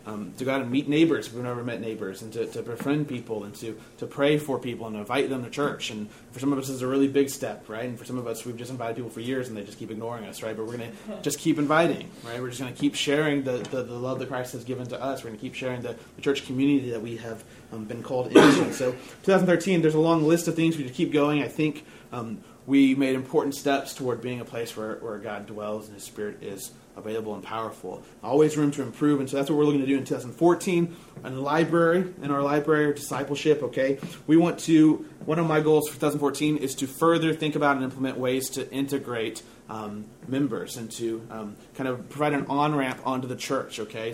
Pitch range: 120-145 Hz